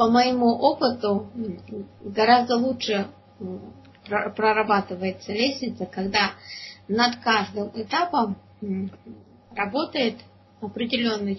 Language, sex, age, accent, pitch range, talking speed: Russian, female, 20-39, native, 185-240 Hz, 70 wpm